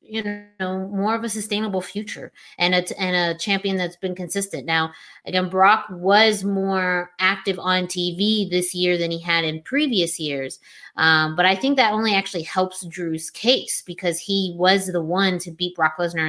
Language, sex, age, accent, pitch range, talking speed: English, female, 20-39, American, 180-225 Hz, 180 wpm